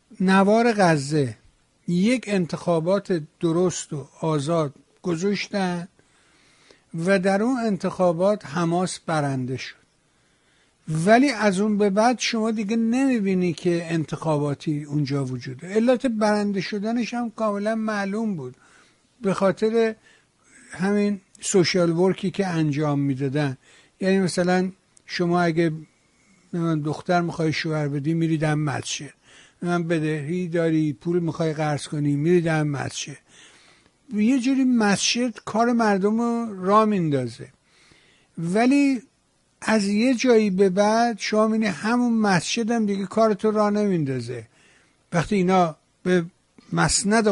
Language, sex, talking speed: Persian, male, 110 wpm